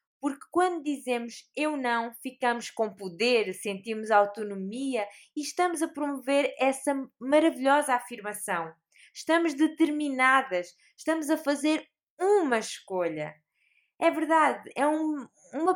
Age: 20-39